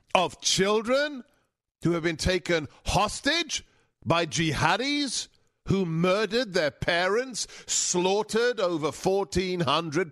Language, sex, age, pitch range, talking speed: English, male, 50-69, 135-185 Hz, 95 wpm